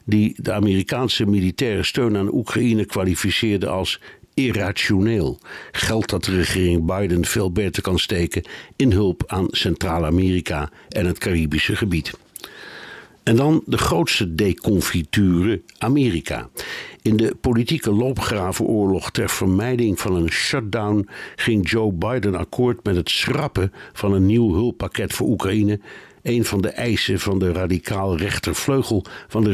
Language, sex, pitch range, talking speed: Dutch, male, 95-115 Hz, 130 wpm